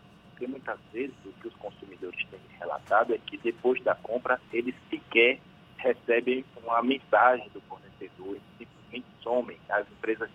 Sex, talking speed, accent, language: male, 140 wpm, Brazilian, Portuguese